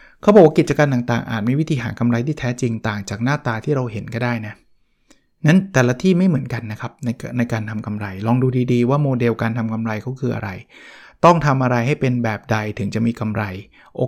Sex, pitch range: male, 115-145 Hz